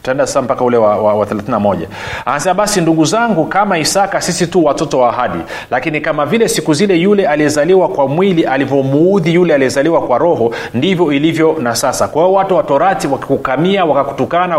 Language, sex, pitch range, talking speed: Swahili, male, 135-175 Hz, 155 wpm